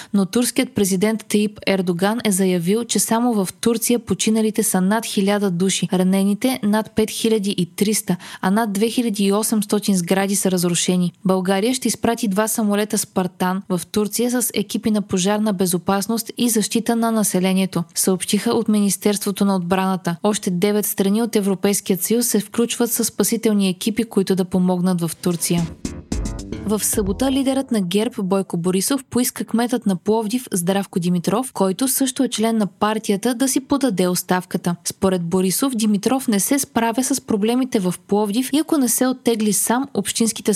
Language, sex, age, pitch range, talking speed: Bulgarian, female, 20-39, 190-230 Hz, 150 wpm